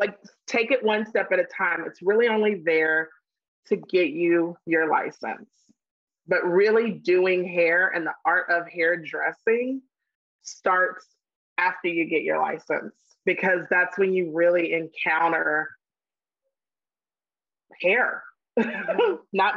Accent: American